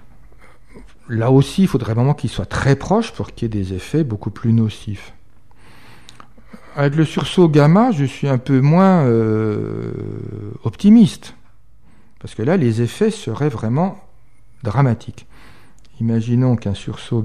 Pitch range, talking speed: 100-130 Hz, 140 wpm